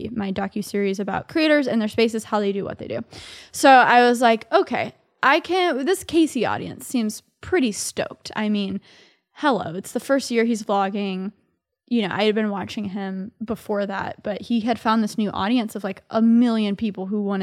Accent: American